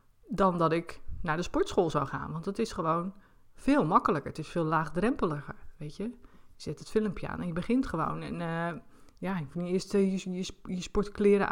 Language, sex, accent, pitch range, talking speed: Dutch, female, Dutch, 165-210 Hz, 195 wpm